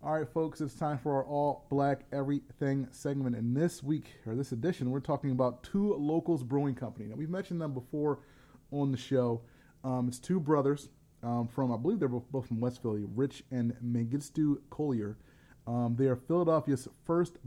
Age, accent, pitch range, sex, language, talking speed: 30-49, American, 120-145 Hz, male, English, 185 wpm